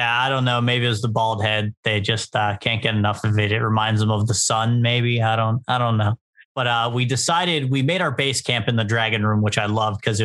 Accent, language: American, English